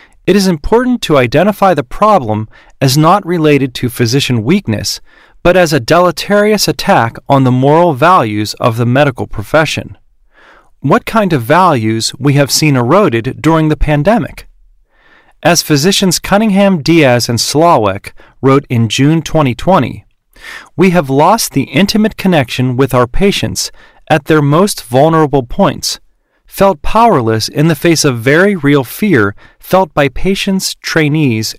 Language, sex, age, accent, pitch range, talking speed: English, male, 40-59, American, 125-185 Hz, 140 wpm